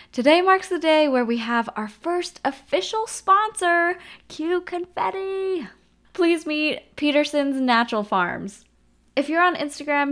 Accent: American